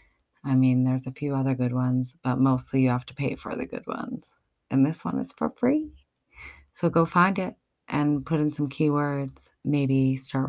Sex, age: female, 30-49